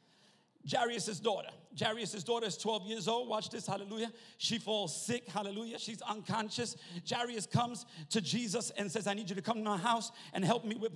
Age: 40-59